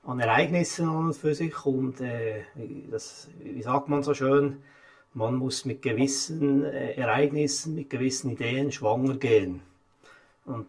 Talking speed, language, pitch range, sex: 140 wpm, German, 135-145 Hz, male